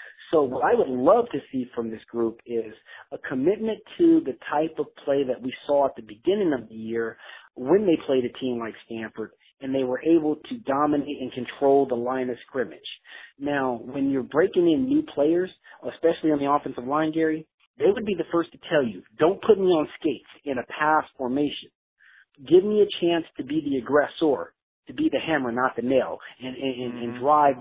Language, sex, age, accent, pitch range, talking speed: English, male, 40-59, American, 125-160 Hz, 205 wpm